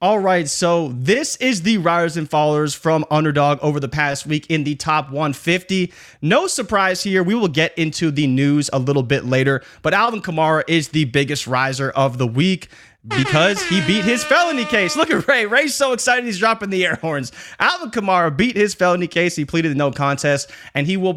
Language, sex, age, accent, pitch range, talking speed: English, male, 20-39, American, 145-185 Hz, 205 wpm